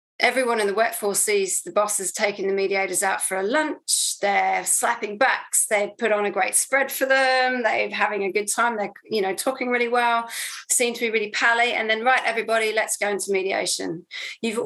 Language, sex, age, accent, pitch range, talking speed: English, female, 30-49, British, 190-245 Hz, 205 wpm